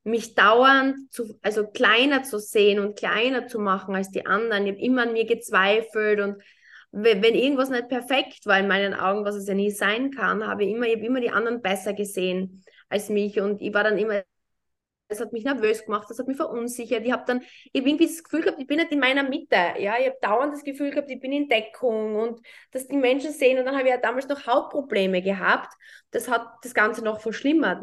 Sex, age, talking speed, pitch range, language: female, 20-39, 235 wpm, 215-285 Hz, German